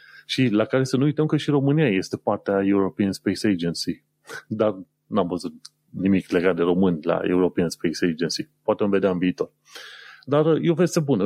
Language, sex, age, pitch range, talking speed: Romanian, male, 30-49, 100-135 Hz, 180 wpm